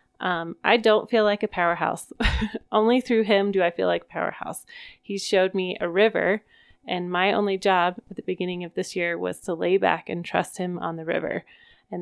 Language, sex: English, female